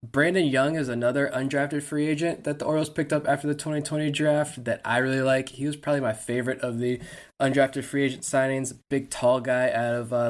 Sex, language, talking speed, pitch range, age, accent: male, English, 215 wpm, 115-130 Hz, 20-39, American